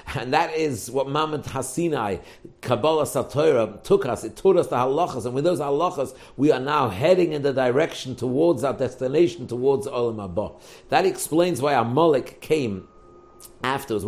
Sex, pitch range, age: male, 120-160 Hz, 50-69